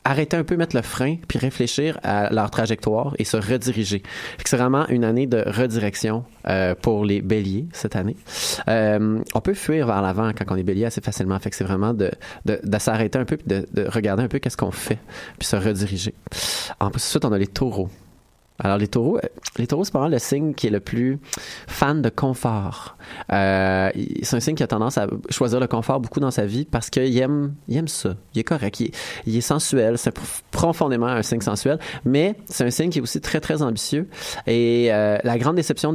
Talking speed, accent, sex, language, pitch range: 225 wpm, Canadian, male, French, 105-135 Hz